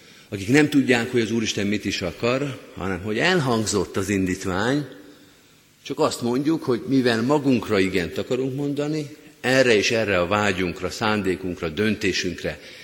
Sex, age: male, 50-69